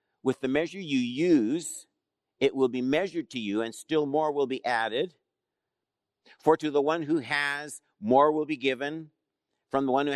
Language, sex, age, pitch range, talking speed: English, male, 50-69, 125-155 Hz, 185 wpm